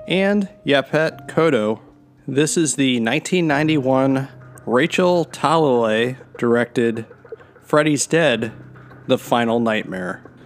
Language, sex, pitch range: English, male, 115-145 Hz